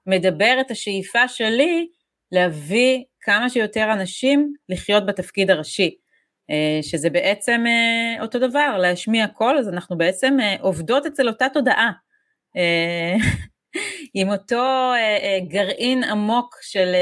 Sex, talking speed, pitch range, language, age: female, 100 wpm, 185-250 Hz, Hebrew, 30-49